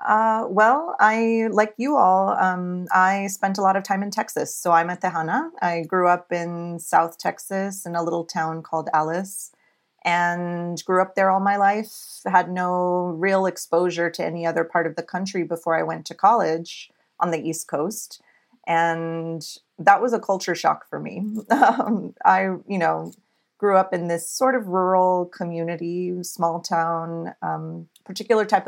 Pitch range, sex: 165-195 Hz, female